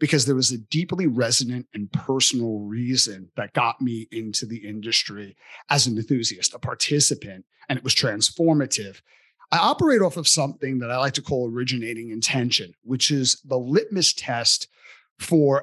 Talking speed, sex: 160 wpm, male